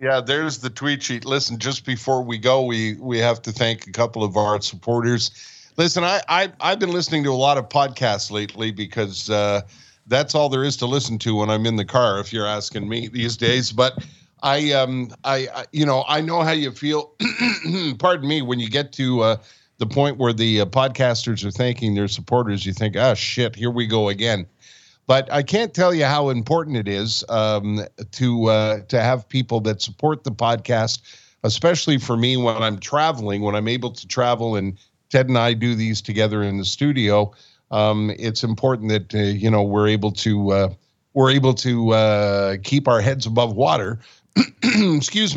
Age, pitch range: 50-69, 110-135 Hz